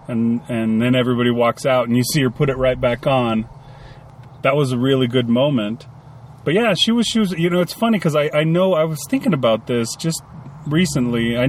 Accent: American